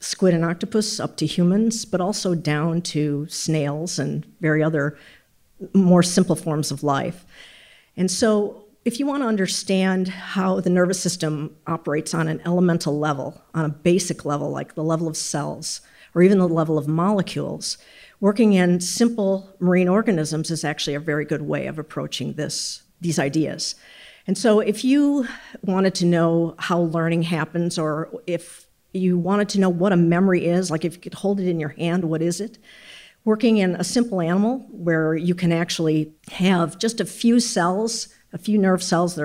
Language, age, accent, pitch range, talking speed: English, 50-69, American, 160-200 Hz, 180 wpm